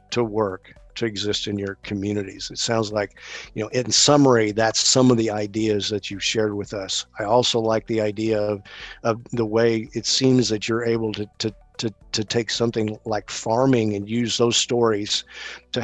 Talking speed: 195 wpm